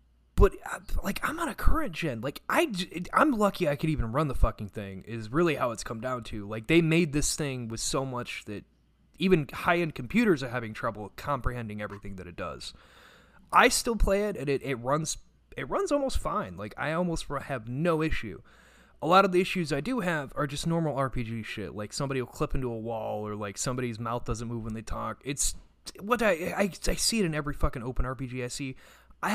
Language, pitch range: English, 115-165 Hz